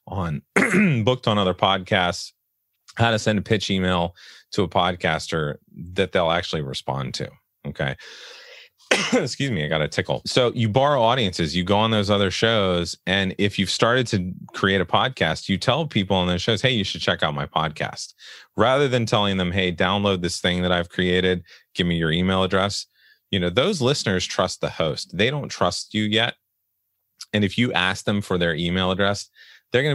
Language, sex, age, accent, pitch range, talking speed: English, male, 30-49, American, 85-115 Hz, 190 wpm